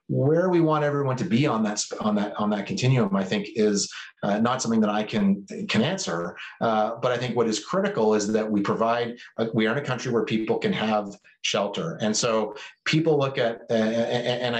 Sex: male